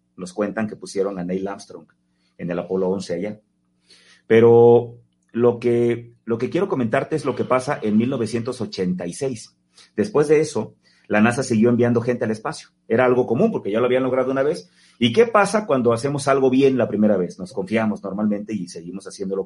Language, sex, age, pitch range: Spanish, male, 40-59, 95-125 Hz